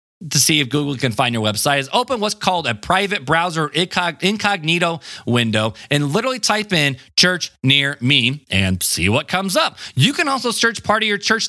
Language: English